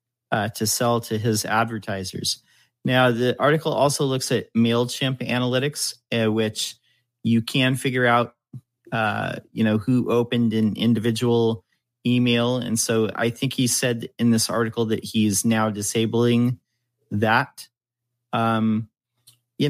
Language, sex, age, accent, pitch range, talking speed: English, male, 40-59, American, 115-130 Hz, 135 wpm